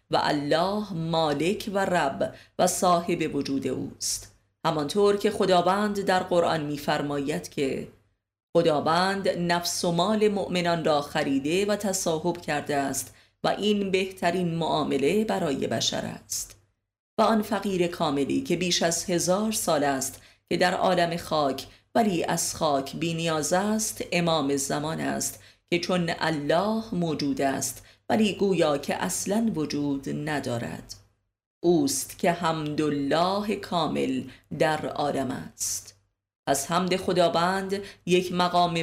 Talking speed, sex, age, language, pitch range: 125 wpm, female, 30-49, Persian, 140-180 Hz